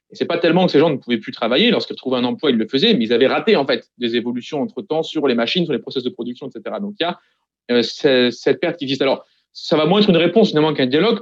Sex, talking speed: male, 300 wpm